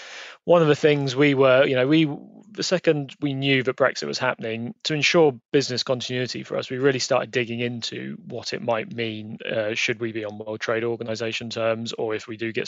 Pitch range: 115-135 Hz